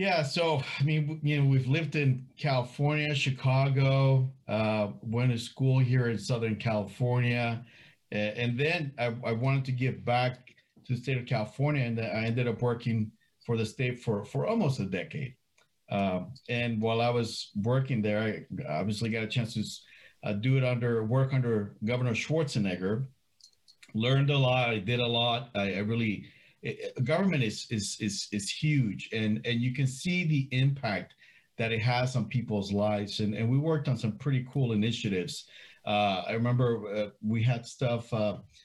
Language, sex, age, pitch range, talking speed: English, male, 40-59, 110-135 Hz, 175 wpm